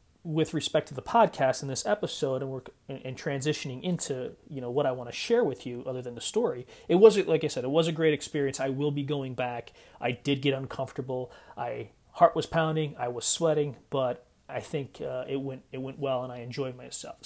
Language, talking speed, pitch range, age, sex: English, 225 wpm, 130-155 Hz, 30-49, male